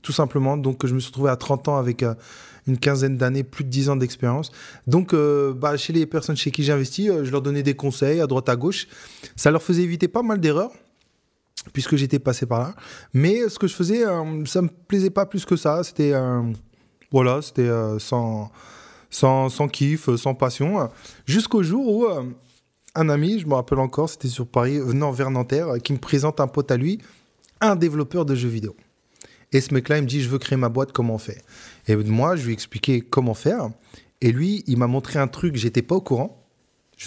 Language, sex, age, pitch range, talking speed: French, male, 20-39, 120-150 Hz, 225 wpm